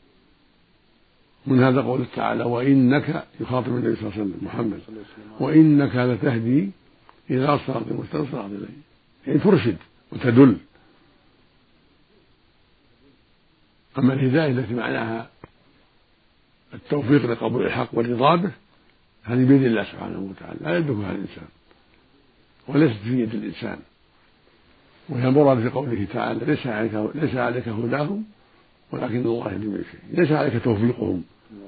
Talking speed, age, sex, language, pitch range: 100 wpm, 60-79, male, Arabic, 110-140 Hz